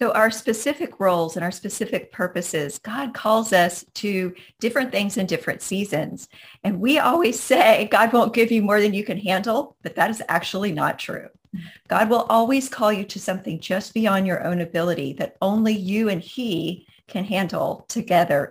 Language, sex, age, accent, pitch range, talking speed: English, female, 40-59, American, 185-235 Hz, 180 wpm